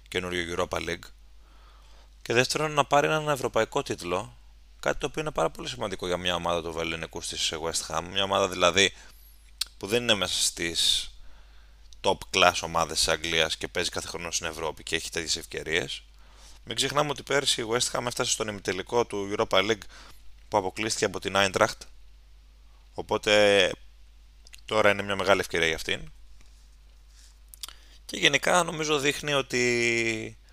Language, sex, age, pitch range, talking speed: Greek, male, 20-39, 80-110 Hz, 160 wpm